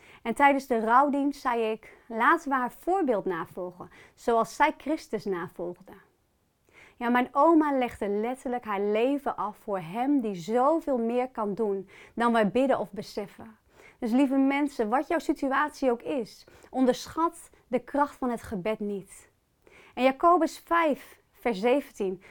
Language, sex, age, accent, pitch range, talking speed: Dutch, female, 30-49, Dutch, 220-285 Hz, 150 wpm